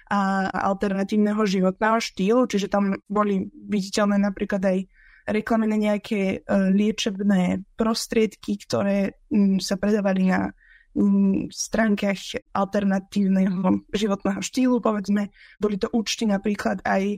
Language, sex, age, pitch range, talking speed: Slovak, female, 20-39, 200-230 Hz, 100 wpm